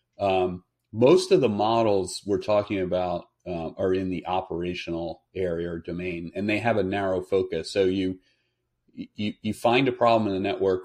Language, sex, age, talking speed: English, male, 40-59, 175 wpm